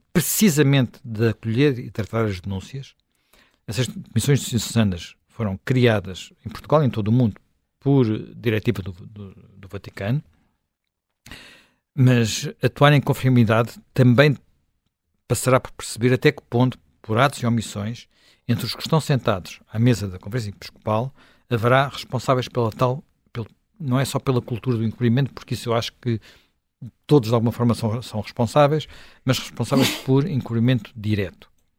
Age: 60-79